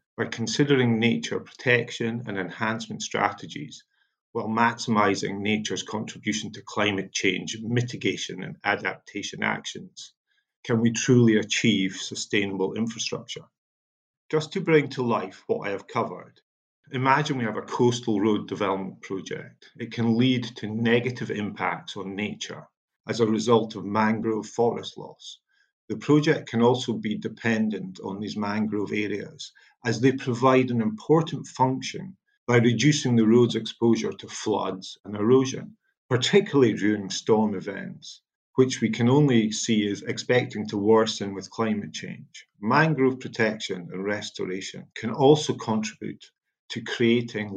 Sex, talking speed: male, 135 wpm